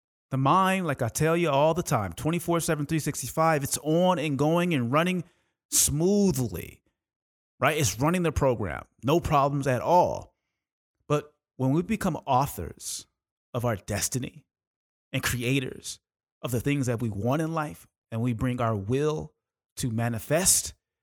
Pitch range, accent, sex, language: 110-155 Hz, American, male, English